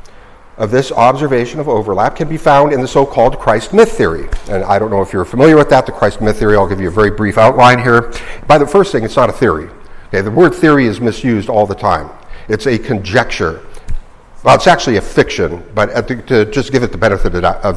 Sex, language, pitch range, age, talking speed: male, English, 110-145 Hz, 50-69, 230 wpm